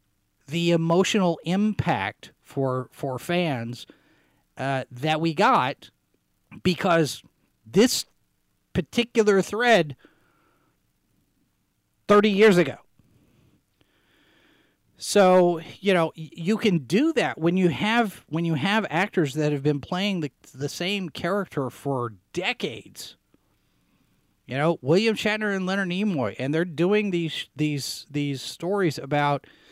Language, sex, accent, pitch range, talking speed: English, male, American, 140-185 Hz, 115 wpm